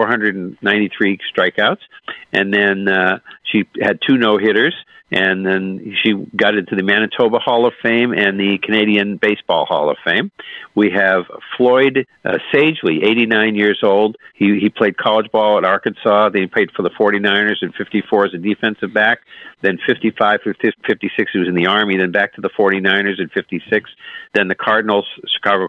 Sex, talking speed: male, 175 wpm